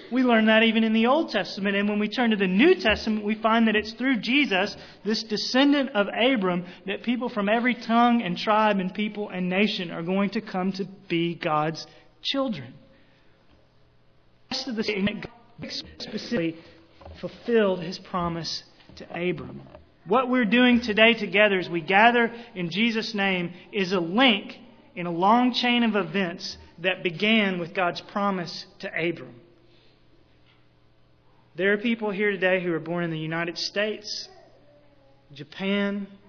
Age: 30-49